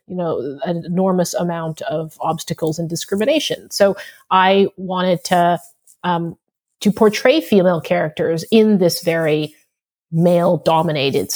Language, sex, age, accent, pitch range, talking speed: English, female, 30-49, American, 165-195 Hz, 115 wpm